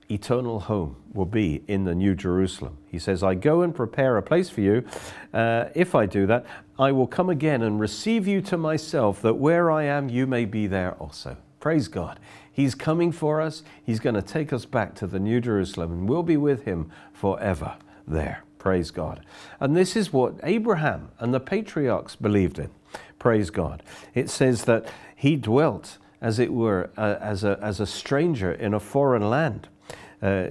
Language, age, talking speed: English, 50-69, 190 wpm